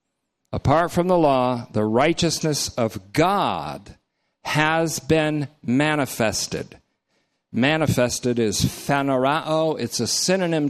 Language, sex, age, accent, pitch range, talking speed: English, male, 50-69, American, 115-155 Hz, 95 wpm